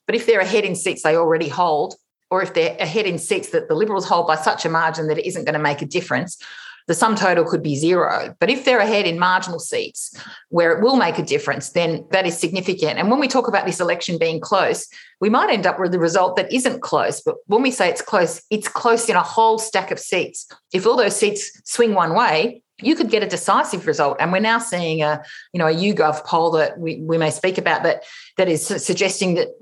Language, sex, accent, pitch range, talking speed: English, female, Australian, 165-215 Hz, 245 wpm